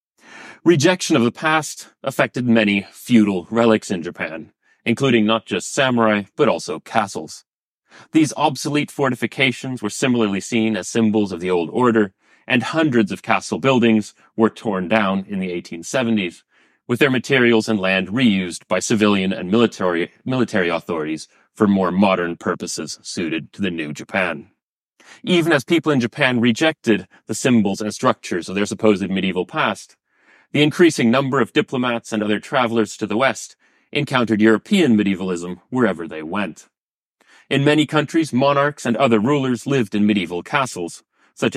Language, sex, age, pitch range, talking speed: English, male, 30-49, 105-125 Hz, 150 wpm